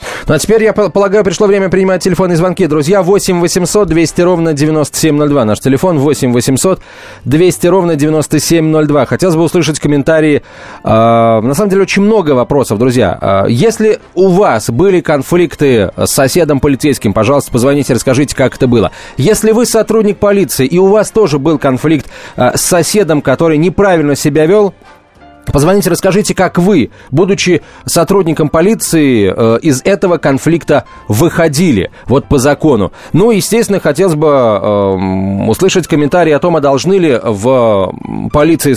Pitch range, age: 130-180 Hz, 30-49